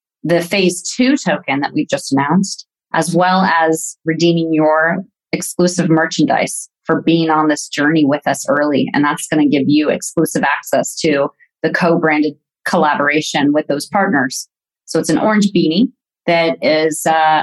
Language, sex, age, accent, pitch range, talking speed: English, female, 30-49, American, 155-200 Hz, 160 wpm